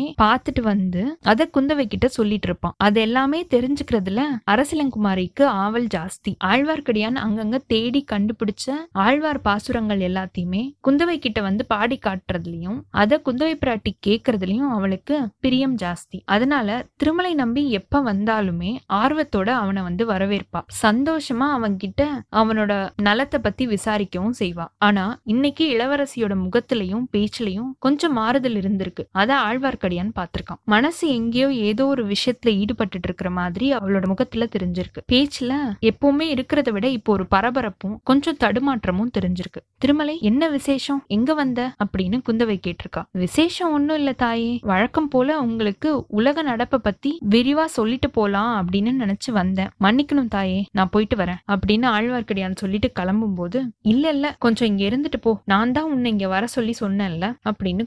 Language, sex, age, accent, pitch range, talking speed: Tamil, female, 20-39, native, 200-270 Hz, 70 wpm